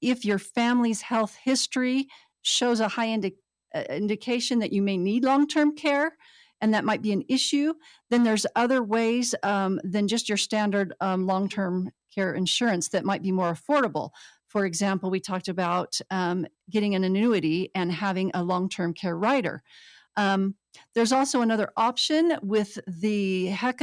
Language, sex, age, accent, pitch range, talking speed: English, female, 50-69, American, 190-235 Hz, 155 wpm